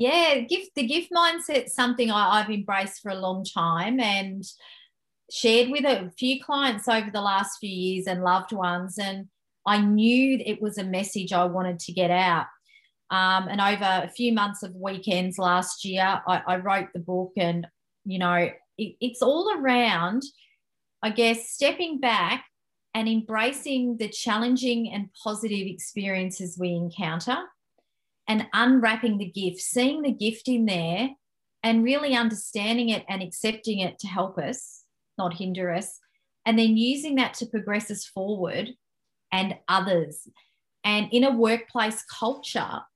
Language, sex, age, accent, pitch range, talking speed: English, female, 30-49, Australian, 190-235 Hz, 155 wpm